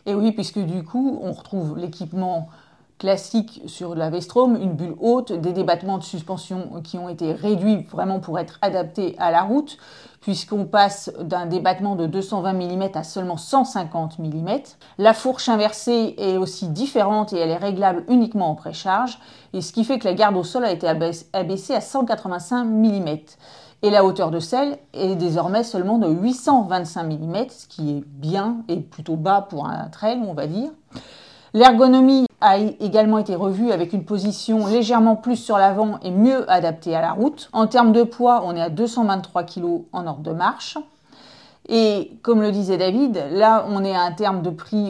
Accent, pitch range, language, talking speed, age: French, 175-220 Hz, French, 185 wpm, 30-49